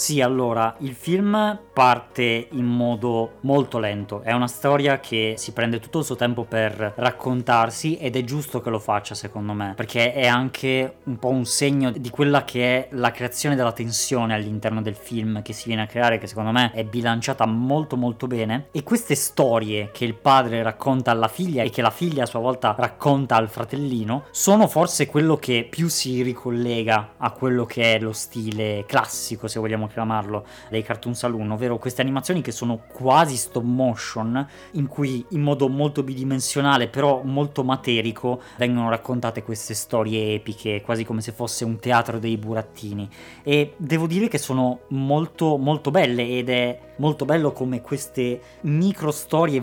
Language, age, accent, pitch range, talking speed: Italian, 20-39, native, 115-135 Hz, 175 wpm